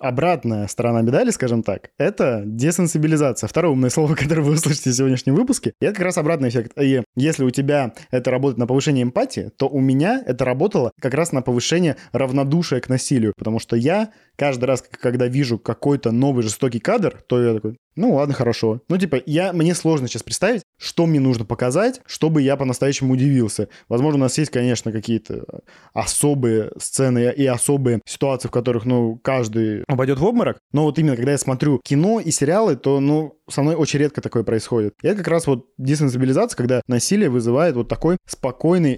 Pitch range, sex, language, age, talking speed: 125-155 Hz, male, Russian, 20-39, 185 wpm